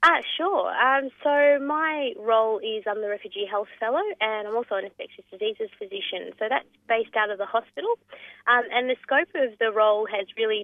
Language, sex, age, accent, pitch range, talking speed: English, female, 20-39, Australian, 205-310 Hz, 205 wpm